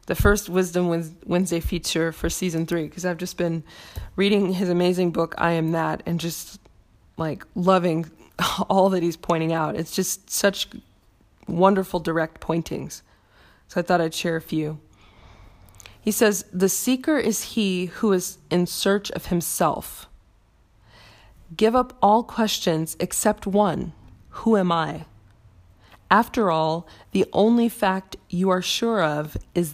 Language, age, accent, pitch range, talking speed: English, 20-39, American, 155-195 Hz, 145 wpm